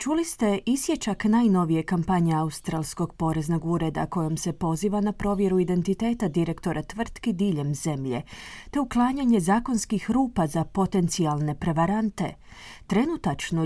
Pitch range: 165-225 Hz